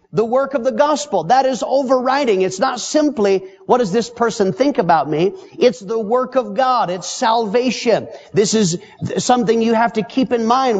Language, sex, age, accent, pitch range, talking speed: English, male, 50-69, American, 160-230 Hz, 195 wpm